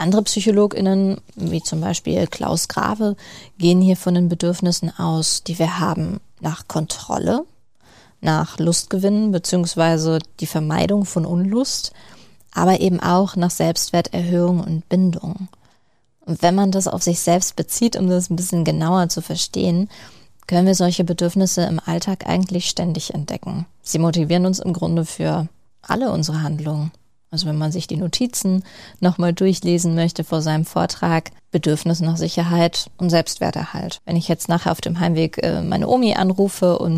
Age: 20-39